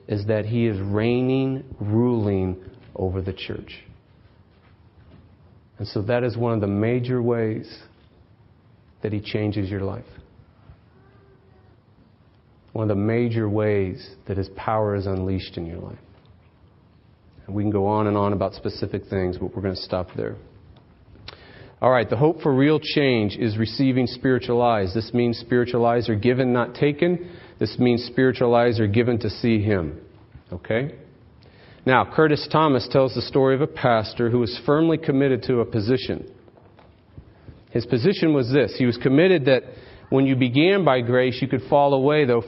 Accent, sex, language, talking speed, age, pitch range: American, male, English, 160 wpm, 40-59, 105-135 Hz